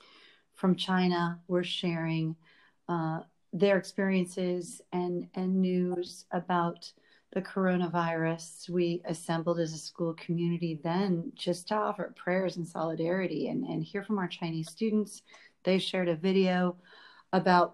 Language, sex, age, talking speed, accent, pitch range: English, female, 40-59, 130 wpm, American, 165-180 Hz